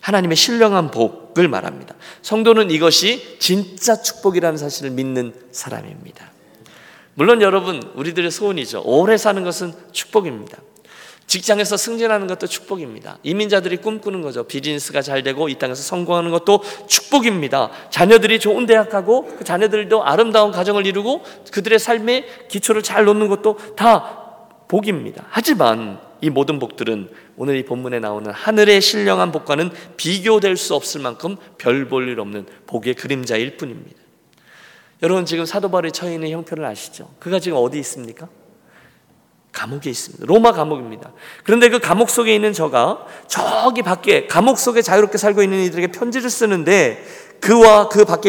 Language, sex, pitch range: Korean, male, 160-225 Hz